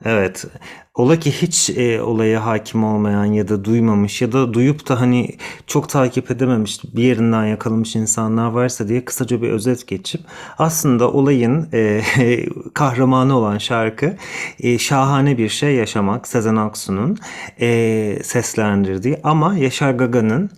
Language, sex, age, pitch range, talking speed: English, male, 40-59, 110-140 Hz, 135 wpm